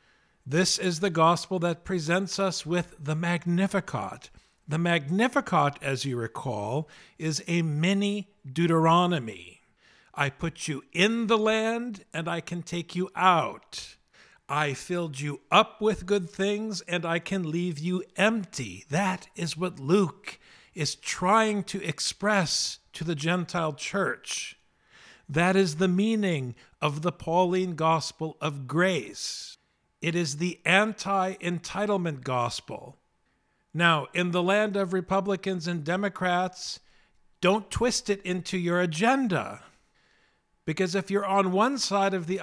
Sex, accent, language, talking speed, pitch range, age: male, American, English, 130 wpm, 165-195 Hz, 50-69